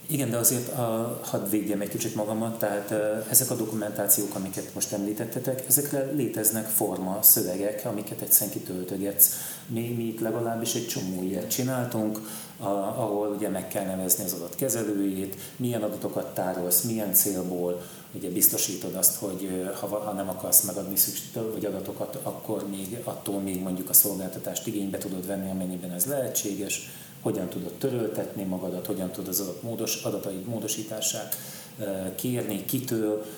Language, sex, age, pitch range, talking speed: Hungarian, male, 30-49, 95-115 Hz, 145 wpm